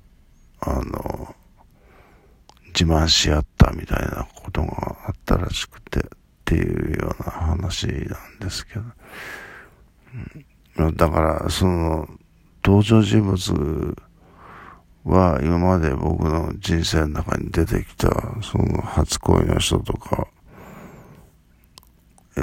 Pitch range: 80-95 Hz